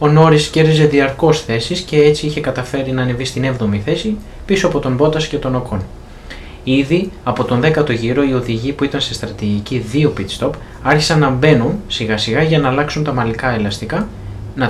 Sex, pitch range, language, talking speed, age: male, 110-140 Hz, Greek, 190 wpm, 20-39